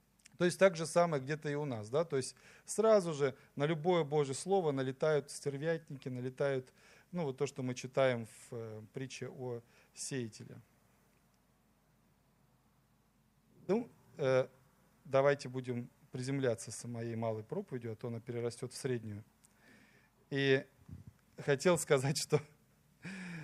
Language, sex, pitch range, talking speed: Russian, male, 125-155 Hz, 130 wpm